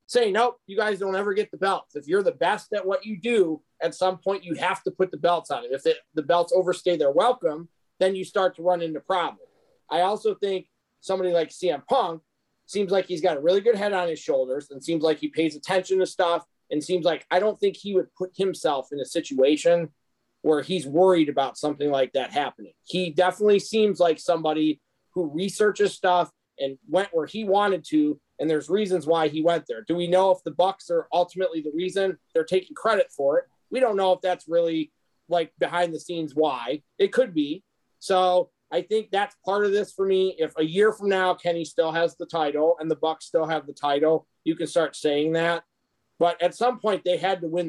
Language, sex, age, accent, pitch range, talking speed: English, male, 30-49, American, 160-195 Hz, 225 wpm